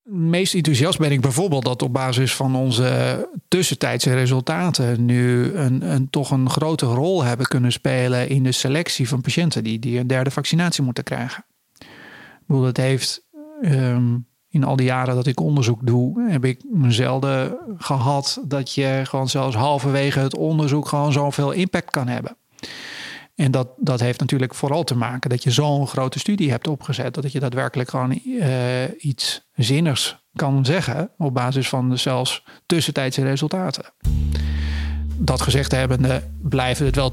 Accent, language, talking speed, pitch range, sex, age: Dutch, Dutch, 160 wpm, 125-145 Hz, male, 40-59